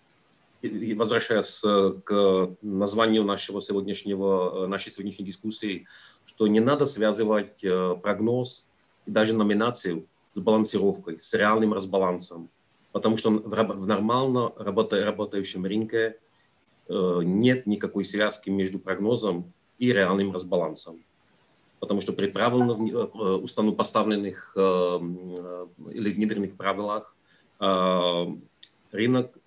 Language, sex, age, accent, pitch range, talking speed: Ukrainian, male, 40-59, native, 95-110 Hz, 90 wpm